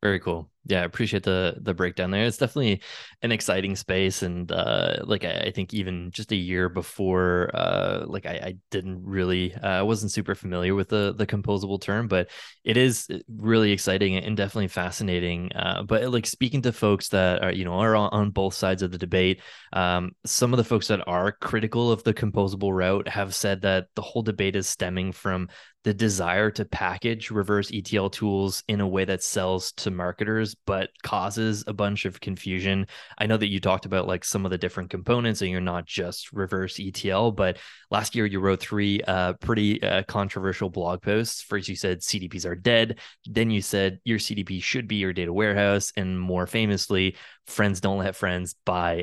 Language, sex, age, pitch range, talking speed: English, male, 20-39, 95-105 Hz, 200 wpm